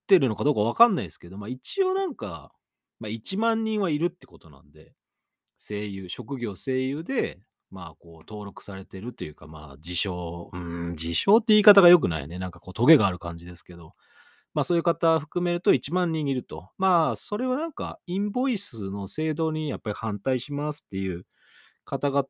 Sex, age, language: male, 30-49, Japanese